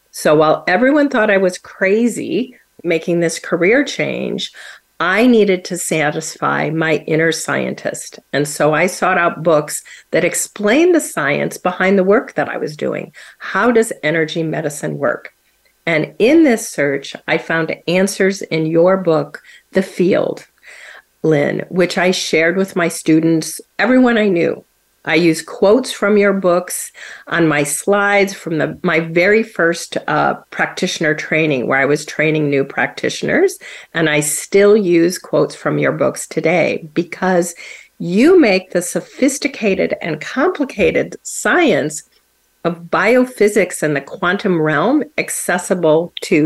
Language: English